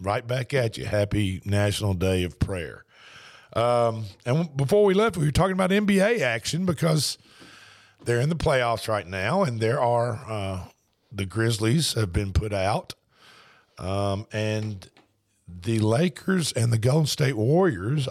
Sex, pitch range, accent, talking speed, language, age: male, 95-120 Hz, American, 150 wpm, English, 50-69